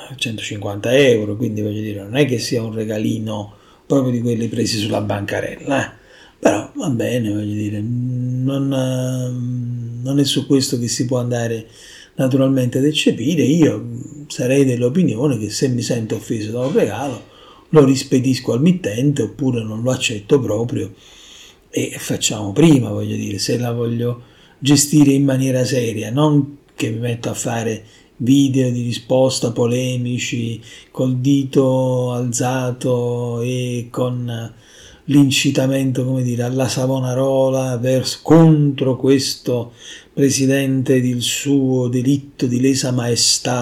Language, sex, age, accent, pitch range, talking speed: Italian, male, 40-59, native, 115-135 Hz, 135 wpm